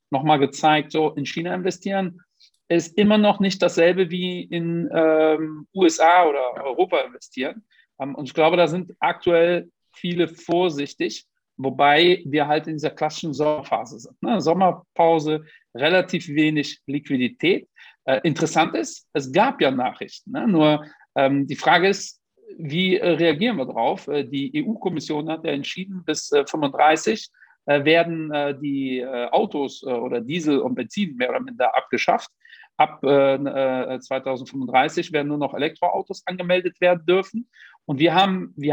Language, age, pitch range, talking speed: German, 50-69, 145-185 Hz, 150 wpm